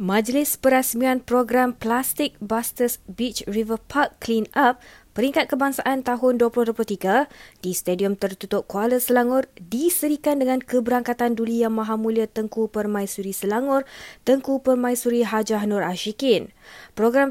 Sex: female